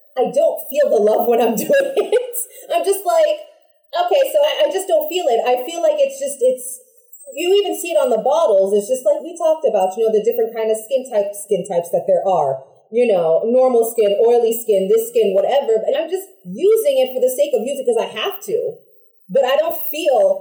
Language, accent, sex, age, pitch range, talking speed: English, American, female, 30-49, 225-350 Hz, 230 wpm